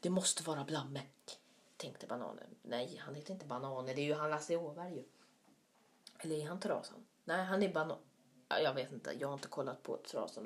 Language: Swedish